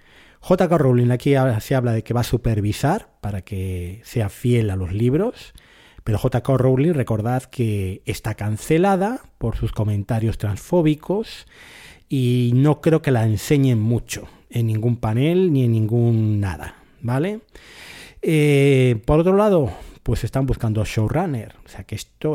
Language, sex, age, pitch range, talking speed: Spanish, male, 30-49, 110-150 Hz, 150 wpm